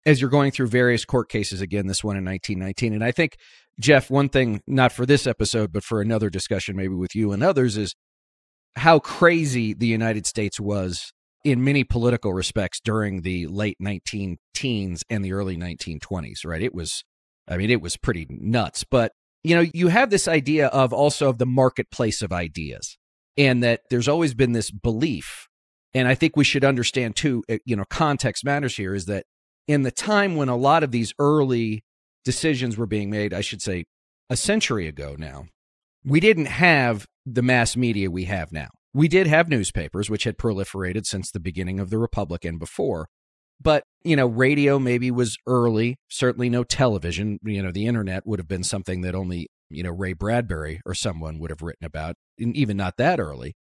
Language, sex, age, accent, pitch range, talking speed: English, male, 40-59, American, 95-135 Hz, 195 wpm